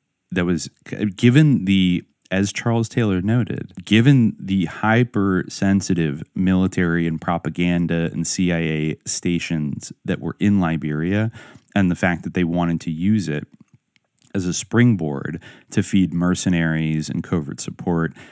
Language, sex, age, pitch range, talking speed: English, male, 30-49, 80-100 Hz, 130 wpm